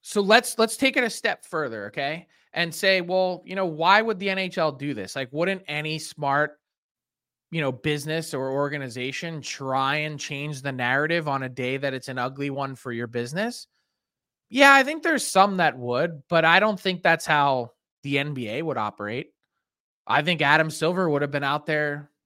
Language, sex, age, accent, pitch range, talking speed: English, male, 20-39, American, 140-185 Hz, 190 wpm